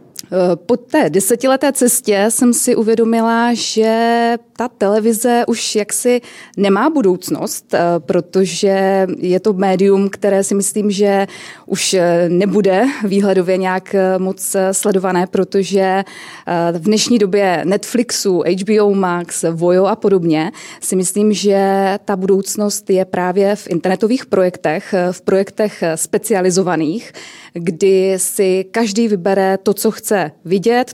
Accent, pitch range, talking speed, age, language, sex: native, 185-215 Hz, 115 wpm, 20-39, Czech, female